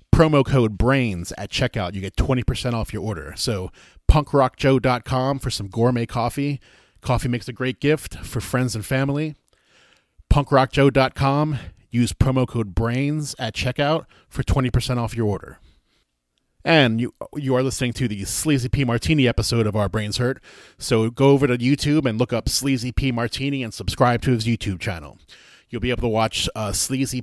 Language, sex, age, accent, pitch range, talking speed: English, male, 30-49, American, 110-135 Hz, 170 wpm